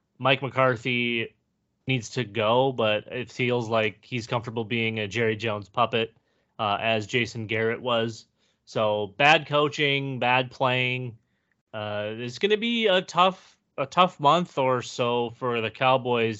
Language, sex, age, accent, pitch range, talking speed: English, male, 20-39, American, 115-140 Hz, 150 wpm